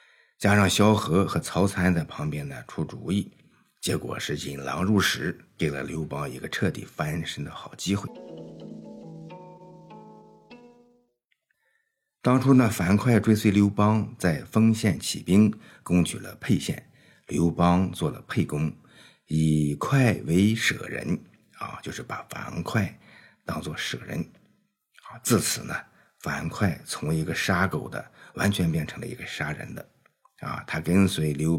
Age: 50-69